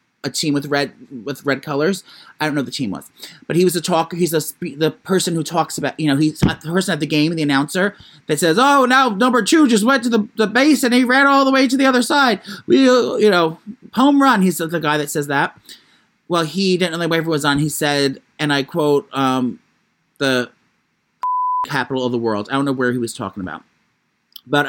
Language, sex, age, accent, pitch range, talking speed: English, male, 30-49, American, 135-175 Hz, 235 wpm